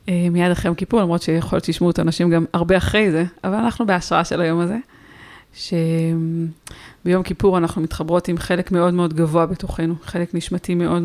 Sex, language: female, Hebrew